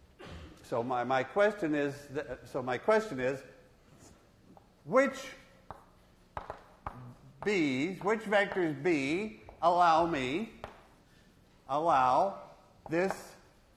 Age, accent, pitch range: 50-69, American, 135-200 Hz